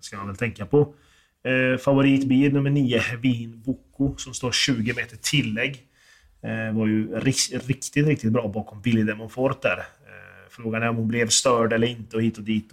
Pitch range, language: 110-130 Hz, Swedish